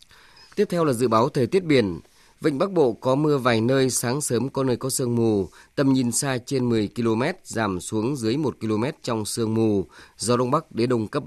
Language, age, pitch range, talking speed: Vietnamese, 20-39, 110-135 Hz, 225 wpm